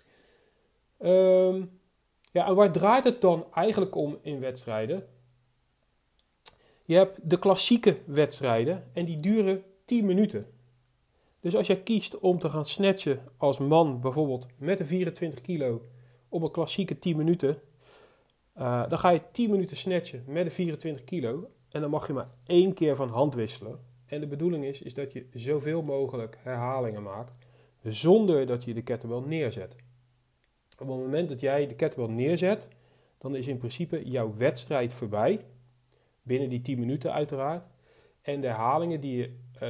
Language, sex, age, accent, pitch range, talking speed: Dutch, male, 40-59, Dutch, 125-180 Hz, 160 wpm